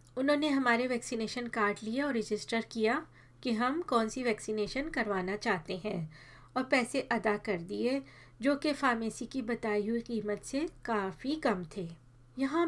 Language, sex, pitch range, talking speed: Hindi, female, 210-265 Hz, 155 wpm